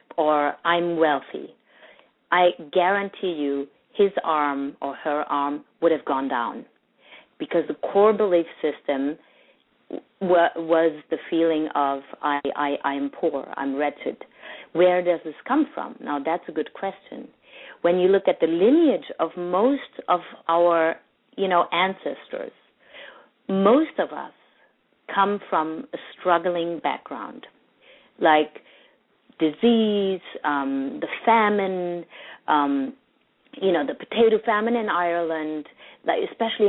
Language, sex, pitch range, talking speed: English, female, 155-200 Hz, 125 wpm